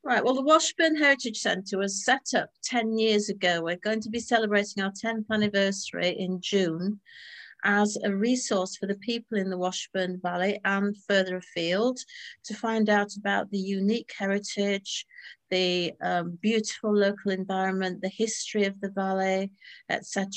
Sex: female